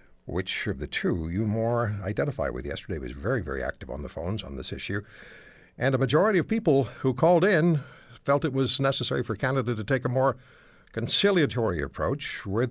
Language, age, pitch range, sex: English, 60-79, 95-155 Hz, male